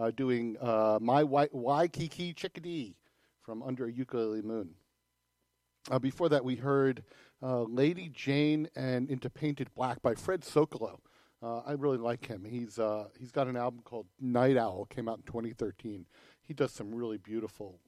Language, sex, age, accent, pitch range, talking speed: English, male, 50-69, American, 115-140 Hz, 170 wpm